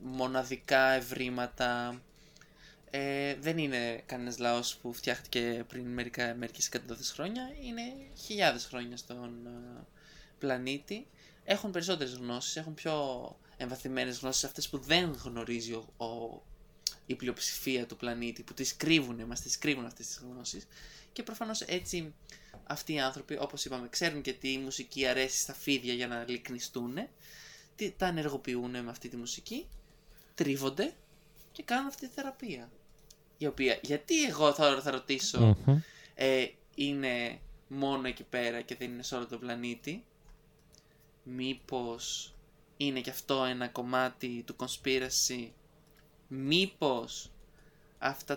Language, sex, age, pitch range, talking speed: Greek, male, 20-39, 125-150 Hz, 125 wpm